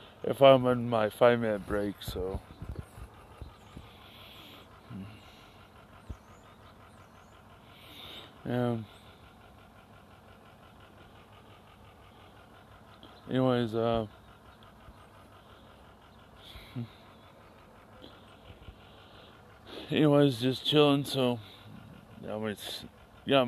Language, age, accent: English, 20-39, American